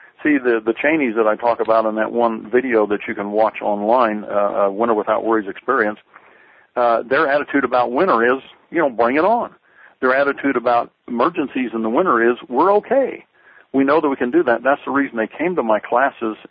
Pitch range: 110-135 Hz